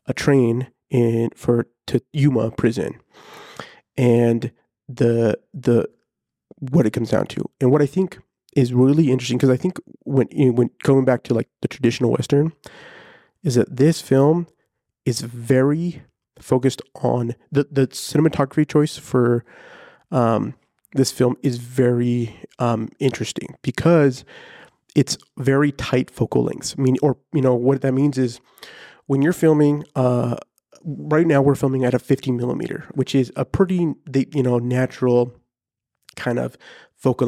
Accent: American